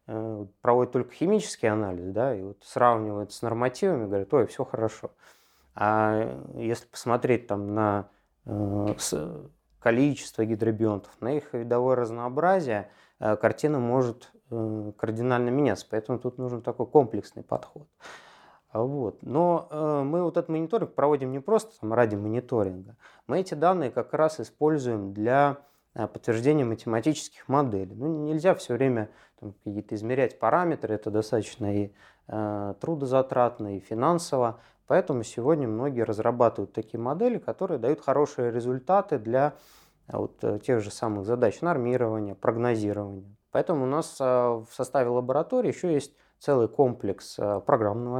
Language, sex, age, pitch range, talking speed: Russian, male, 20-39, 105-140 Hz, 130 wpm